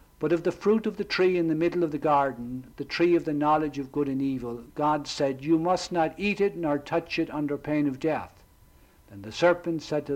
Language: English